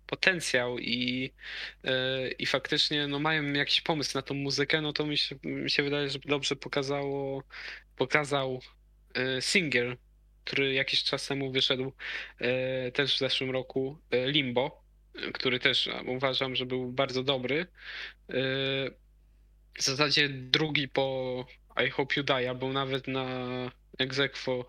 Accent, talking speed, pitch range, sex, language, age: native, 125 wpm, 130-145 Hz, male, Polish, 20-39